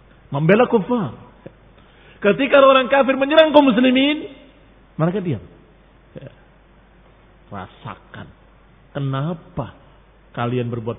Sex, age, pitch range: male, 50-69, 150-225 Hz